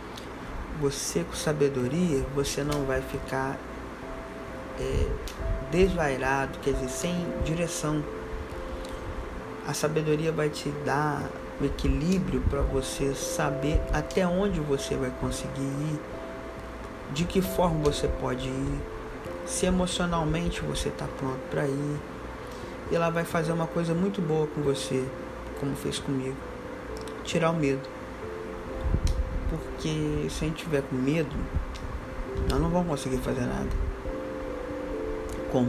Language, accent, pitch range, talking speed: Portuguese, Brazilian, 125-160 Hz, 125 wpm